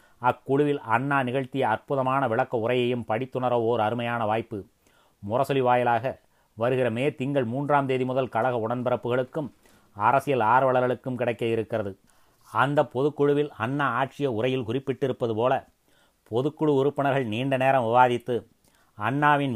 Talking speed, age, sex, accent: 115 wpm, 30-49, male, native